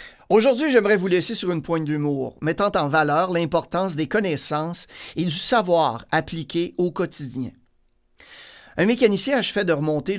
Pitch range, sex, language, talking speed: 150-205 Hz, male, French, 145 wpm